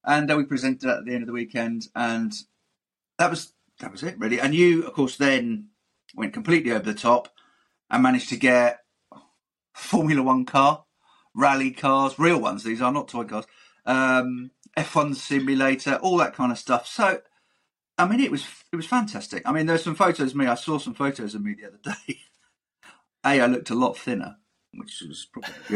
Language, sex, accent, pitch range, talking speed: English, male, British, 120-165 Hz, 200 wpm